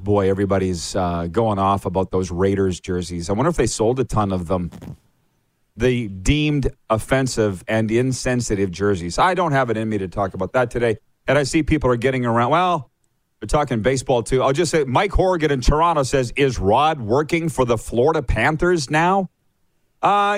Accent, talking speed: American, 190 wpm